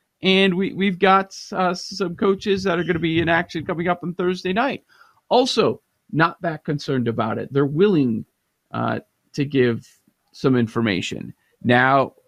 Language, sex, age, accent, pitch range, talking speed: English, male, 40-59, American, 120-155 Hz, 160 wpm